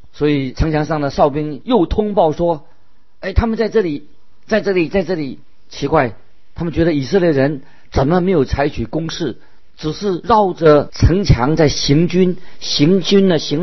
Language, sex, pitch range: Chinese, male, 120-160 Hz